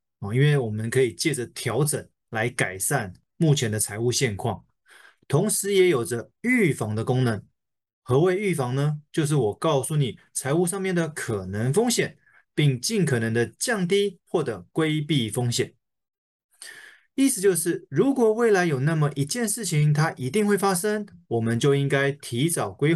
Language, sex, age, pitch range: Chinese, male, 20-39, 125-180 Hz